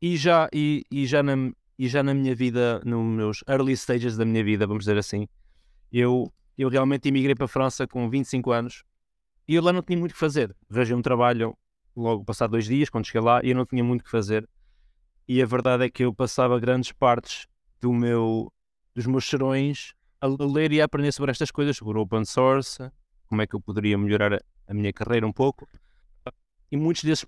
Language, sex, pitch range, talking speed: Portuguese, male, 115-140 Hz, 215 wpm